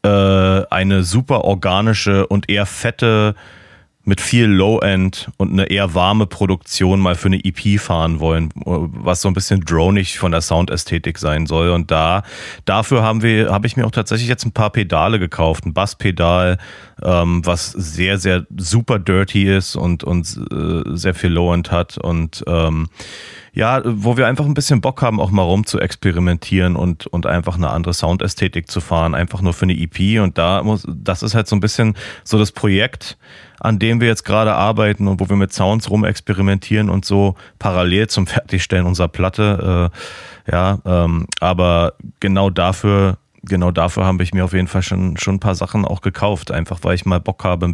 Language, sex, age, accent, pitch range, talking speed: German, male, 30-49, German, 90-110 Hz, 190 wpm